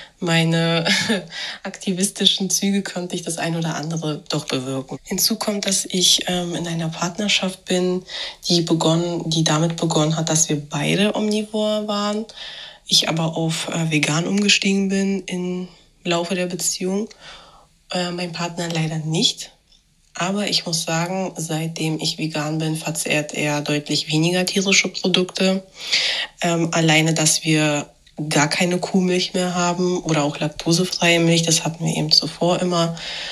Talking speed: 145 wpm